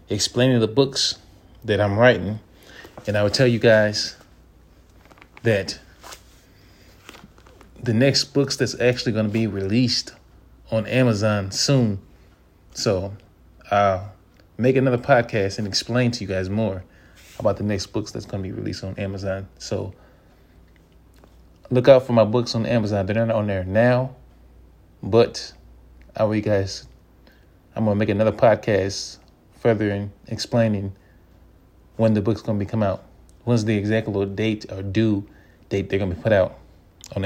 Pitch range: 95-115 Hz